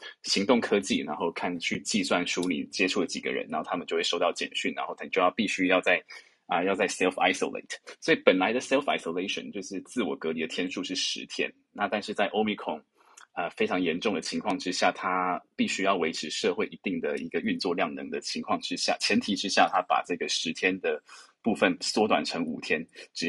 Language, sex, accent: Chinese, male, native